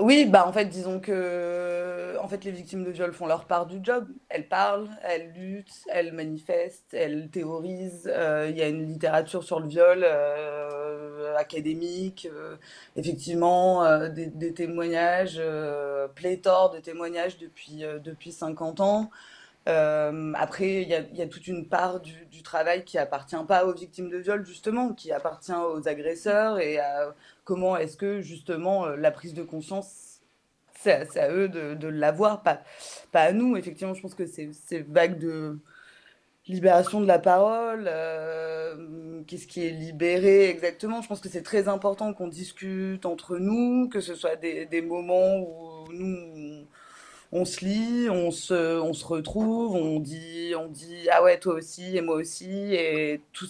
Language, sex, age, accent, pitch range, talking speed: French, female, 20-39, French, 160-185 Hz, 175 wpm